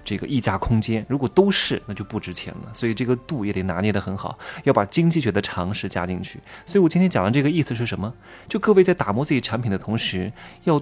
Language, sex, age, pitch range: Chinese, male, 20-39, 100-140 Hz